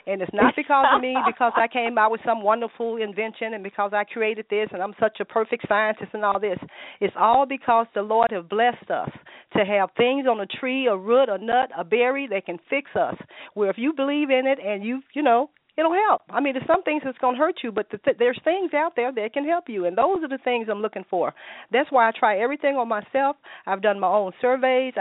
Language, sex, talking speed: English, female, 250 wpm